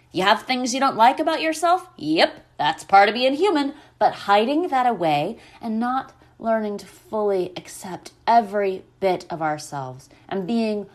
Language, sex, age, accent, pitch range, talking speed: English, female, 30-49, American, 175-235 Hz, 165 wpm